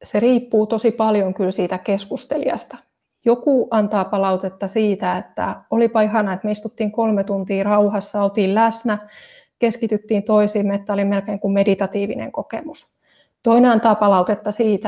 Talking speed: 135 wpm